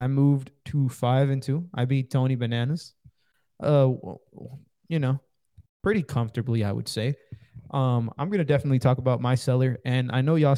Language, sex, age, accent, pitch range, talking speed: English, male, 20-39, American, 120-140 Hz, 170 wpm